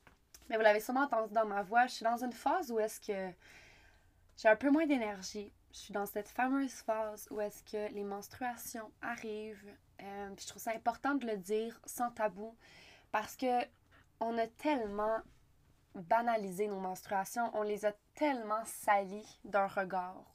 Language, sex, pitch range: French, female, 195-230 Hz